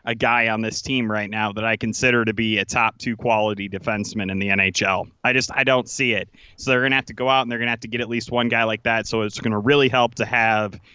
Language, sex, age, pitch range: English, male, 30-49, 110-130 Hz